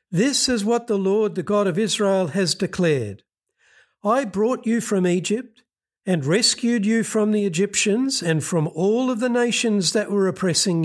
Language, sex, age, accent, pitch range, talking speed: English, male, 60-79, Australian, 160-215 Hz, 170 wpm